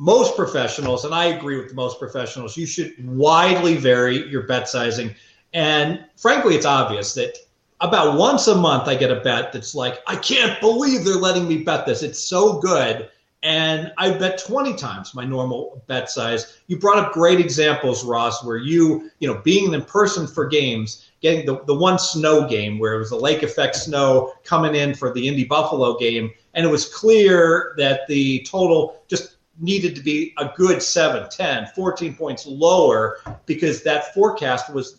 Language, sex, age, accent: English, male, 40-59, American